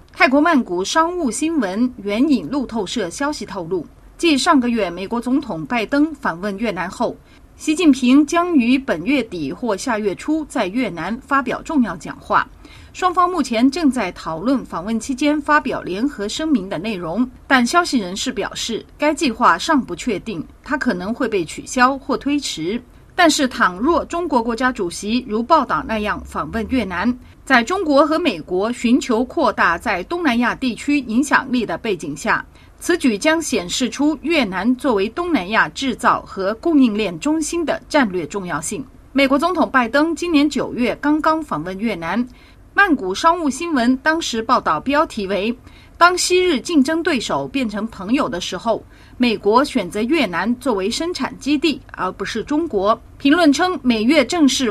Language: Chinese